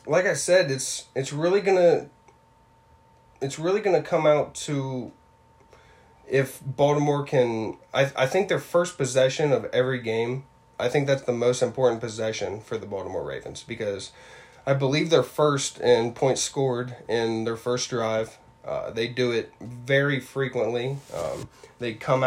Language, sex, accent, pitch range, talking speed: English, male, American, 120-140 Hz, 155 wpm